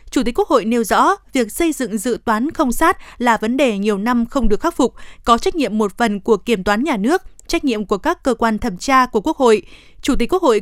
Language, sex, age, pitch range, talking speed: Vietnamese, female, 20-39, 220-280 Hz, 265 wpm